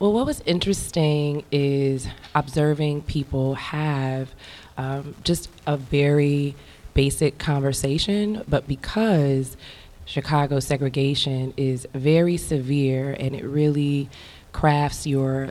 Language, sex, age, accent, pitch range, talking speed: English, female, 20-39, American, 130-155 Hz, 100 wpm